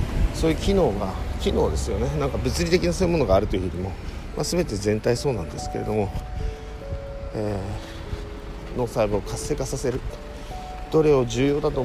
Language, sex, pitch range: Japanese, male, 85-120 Hz